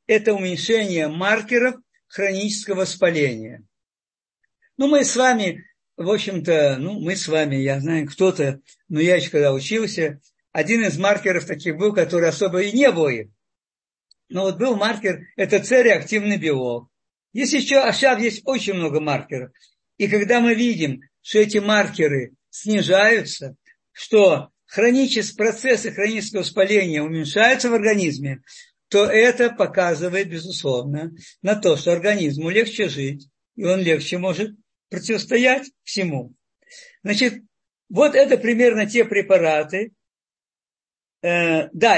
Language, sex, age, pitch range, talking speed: Russian, male, 50-69, 170-240 Hz, 125 wpm